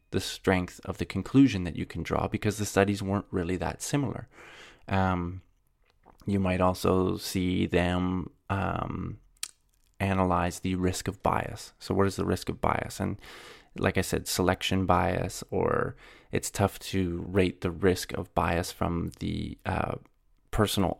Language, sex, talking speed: English, male, 155 wpm